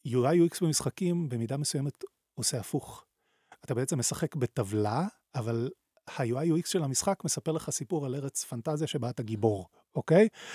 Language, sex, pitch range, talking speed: Hebrew, male, 125-175 Hz, 150 wpm